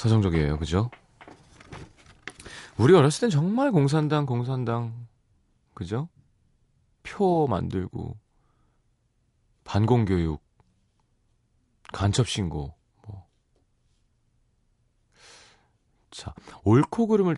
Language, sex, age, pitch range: Korean, male, 30-49, 95-140 Hz